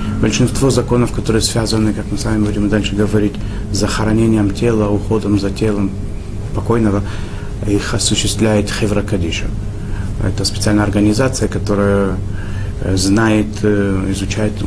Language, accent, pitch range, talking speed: Russian, native, 100-105 Hz, 105 wpm